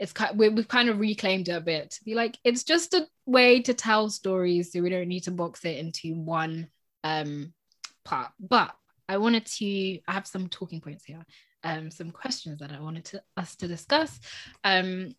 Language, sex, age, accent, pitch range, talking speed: English, female, 10-29, British, 170-220 Hz, 210 wpm